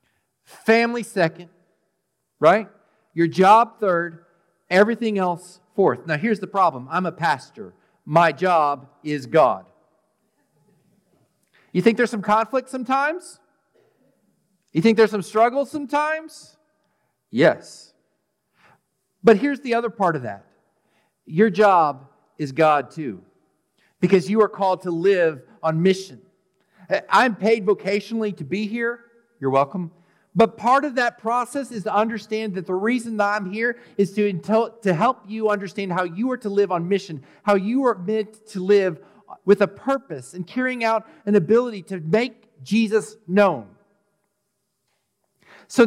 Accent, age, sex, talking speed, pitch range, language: American, 50-69, male, 140 wpm, 180-230 Hz, English